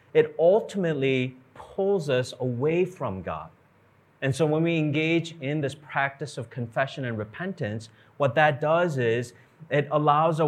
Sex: male